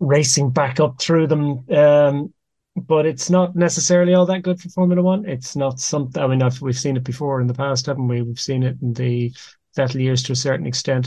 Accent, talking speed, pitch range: Irish, 230 wpm, 125-145 Hz